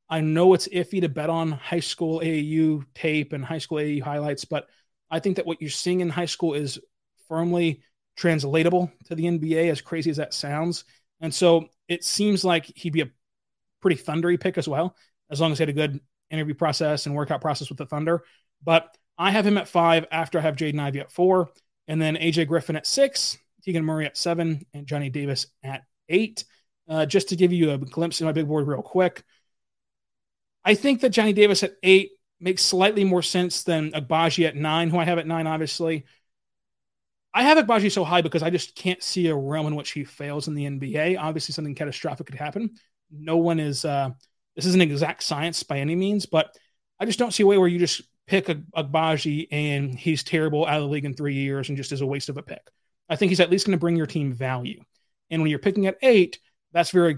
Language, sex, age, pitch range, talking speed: English, male, 20-39, 150-175 Hz, 220 wpm